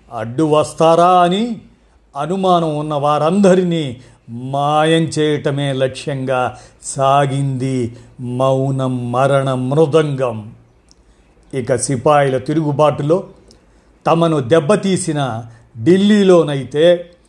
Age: 50-69